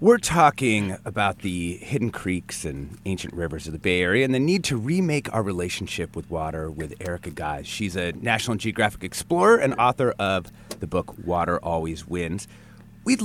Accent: American